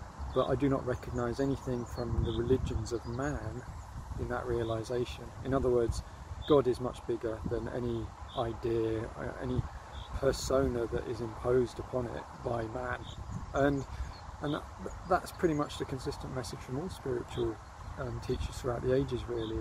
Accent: British